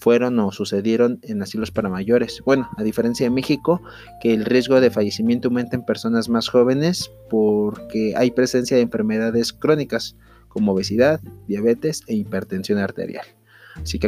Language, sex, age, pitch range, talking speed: Spanish, male, 30-49, 105-135 Hz, 155 wpm